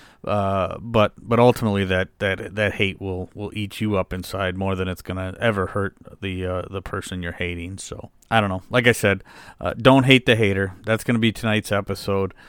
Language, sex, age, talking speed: English, male, 40-59, 215 wpm